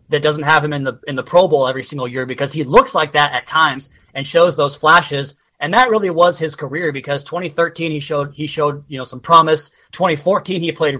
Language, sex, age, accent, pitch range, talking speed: English, male, 20-39, American, 145-170 Hz, 235 wpm